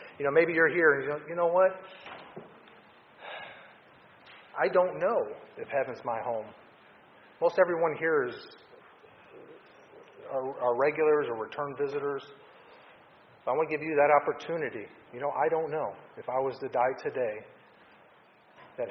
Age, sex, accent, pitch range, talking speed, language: 40-59, male, American, 125-185 Hz, 150 wpm, English